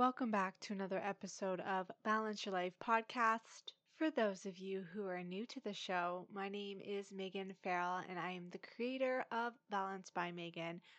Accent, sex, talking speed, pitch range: American, female, 185 wpm, 190-235 Hz